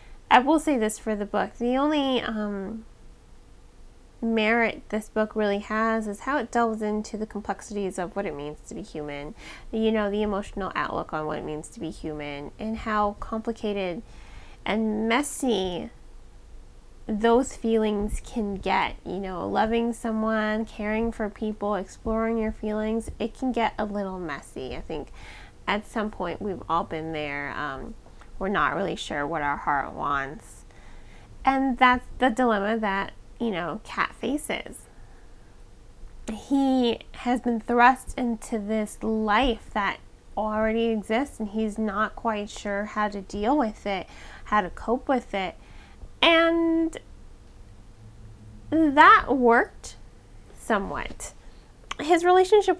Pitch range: 200-235 Hz